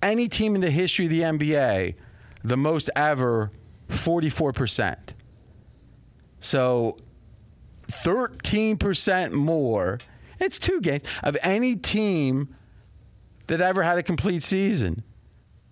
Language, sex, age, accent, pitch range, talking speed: English, male, 40-59, American, 115-155 Hz, 105 wpm